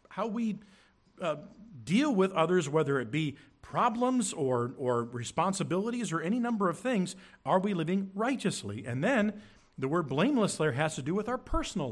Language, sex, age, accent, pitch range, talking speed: English, male, 50-69, American, 120-190 Hz, 170 wpm